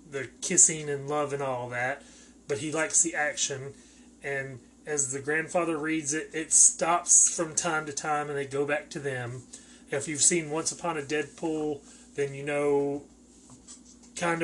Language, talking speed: English, 170 wpm